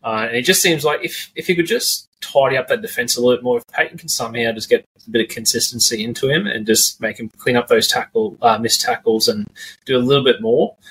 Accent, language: Australian, English